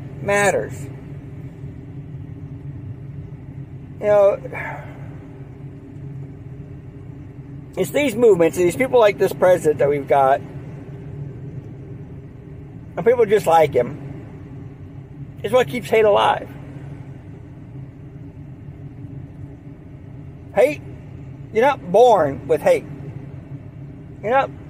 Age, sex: 50-69, male